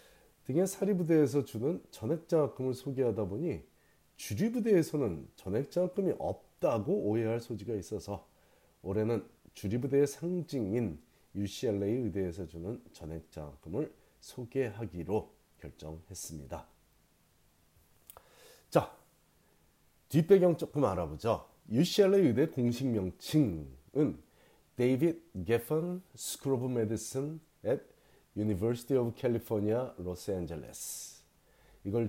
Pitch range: 95-135 Hz